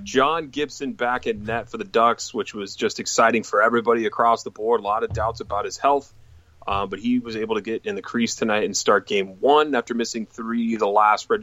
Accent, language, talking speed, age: American, English, 235 wpm, 30-49